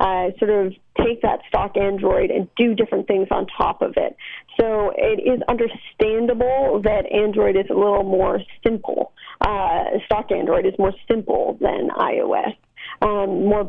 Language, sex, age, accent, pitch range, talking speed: English, female, 30-49, American, 195-235 Hz, 160 wpm